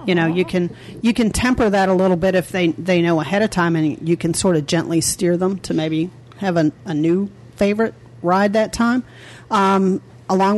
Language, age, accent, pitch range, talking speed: English, 40-59, American, 155-195 Hz, 215 wpm